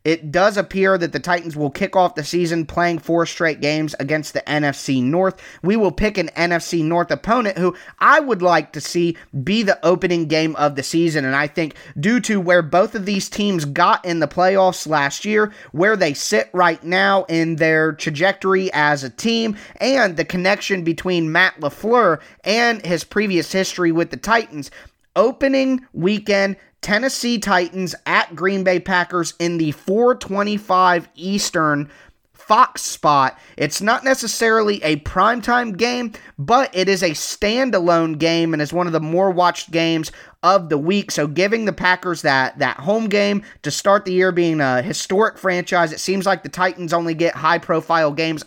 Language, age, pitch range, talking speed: English, 30-49, 155-195 Hz, 175 wpm